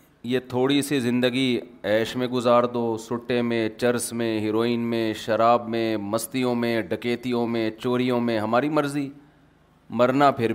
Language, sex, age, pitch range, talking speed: Urdu, male, 30-49, 120-155 Hz, 150 wpm